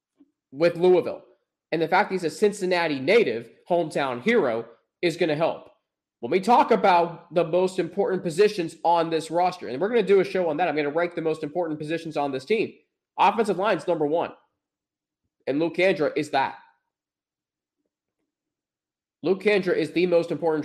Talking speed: 180 wpm